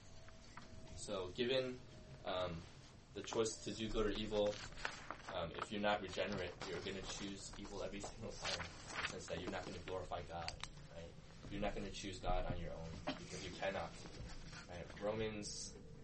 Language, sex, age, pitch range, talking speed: English, male, 20-39, 90-110 Hz, 185 wpm